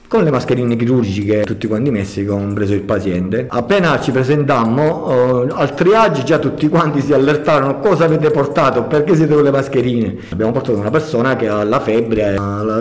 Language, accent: Italian, native